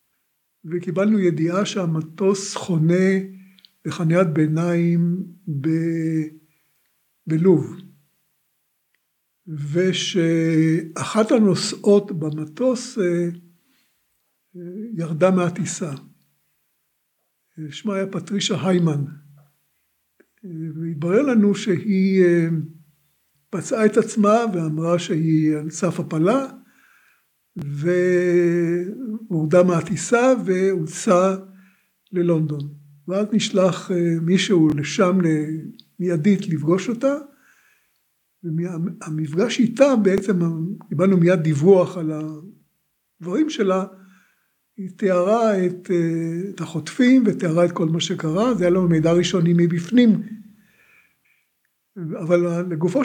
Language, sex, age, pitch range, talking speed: Hebrew, male, 60-79, 165-195 Hz, 75 wpm